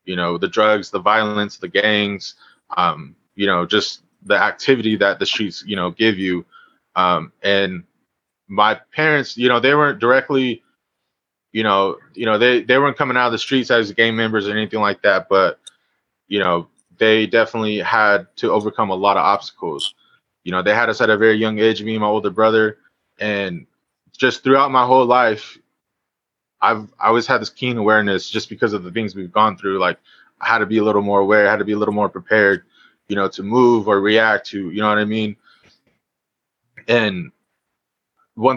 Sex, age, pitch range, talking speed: male, 20-39, 100-120 Hz, 200 wpm